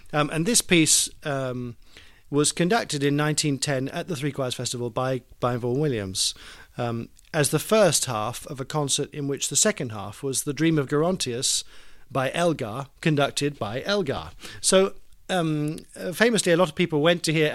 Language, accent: Danish, British